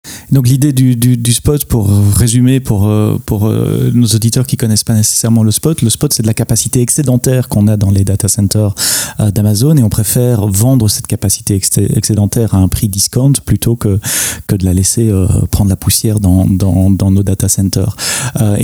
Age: 30-49